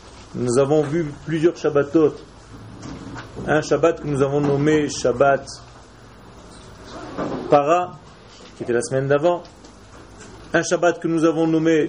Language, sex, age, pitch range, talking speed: French, male, 40-59, 125-175 Hz, 120 wpm